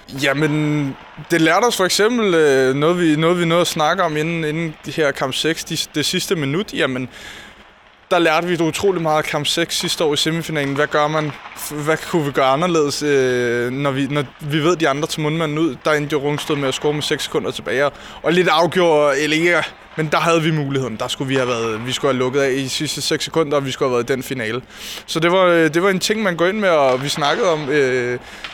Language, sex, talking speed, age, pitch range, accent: Danish, male, 250 wpm, 20-39, 135-165 Hz, native